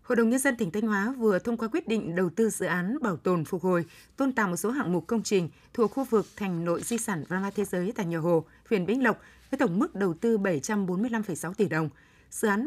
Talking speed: 260 wpm